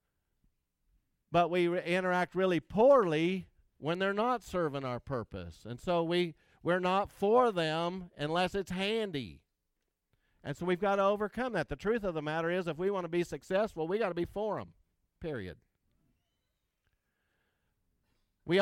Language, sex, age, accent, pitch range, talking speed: English, male, 50-69, American, 120-190 Hz, 160 wpm